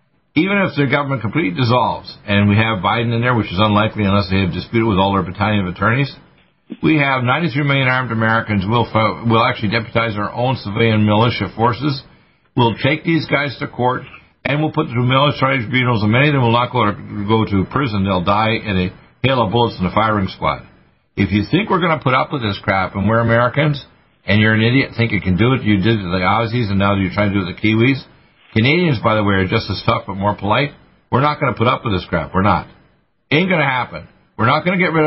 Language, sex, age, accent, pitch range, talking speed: English, male, 60-79, American, 105-130 Hz, 245 wpm